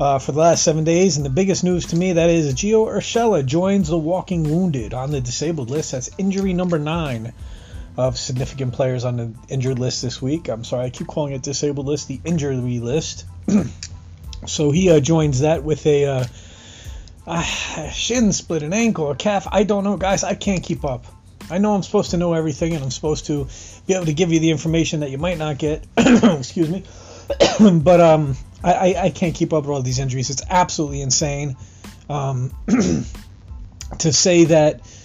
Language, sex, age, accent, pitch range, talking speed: English, male, 30-49, American, 125-160 Hz, 195 wpm